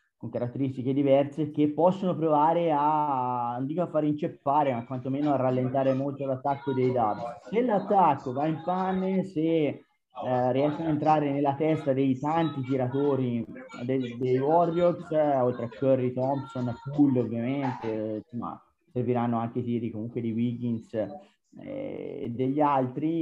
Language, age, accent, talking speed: Italian, 30-49, native, 145 wpm